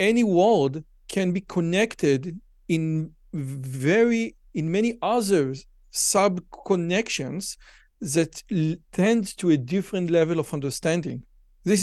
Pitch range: 150-195 Hz